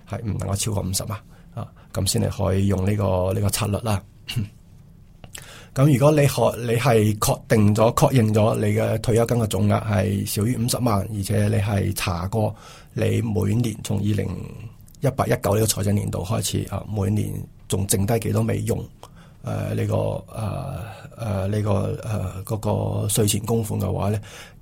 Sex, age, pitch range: male, 20-39, 100-115 Hz